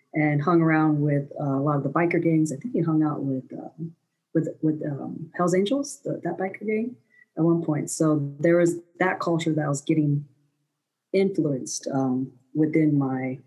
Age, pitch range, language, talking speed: 40-59, 140-160 Hz, English, 190 wpm